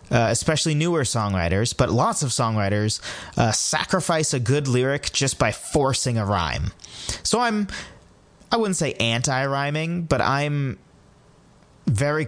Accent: American